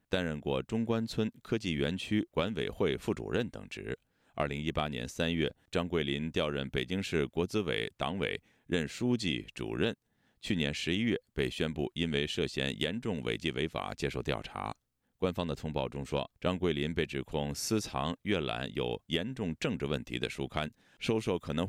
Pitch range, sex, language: 70-110 Hz, male, Chinese